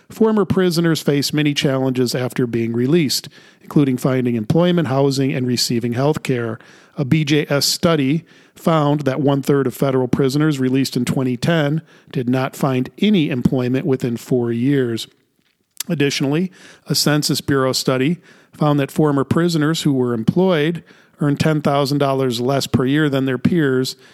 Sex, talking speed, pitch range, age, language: male, 140 wpm, 125-155 Hz, 40-59, English